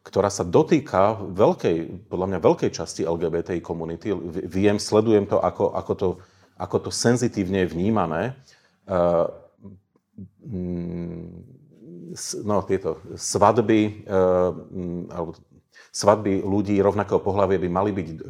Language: Slovak